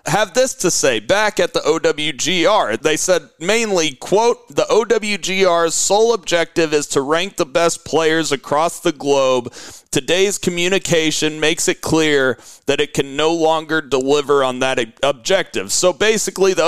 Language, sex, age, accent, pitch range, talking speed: English, male, 40-59, American, 150-180 Hz, 150 wpm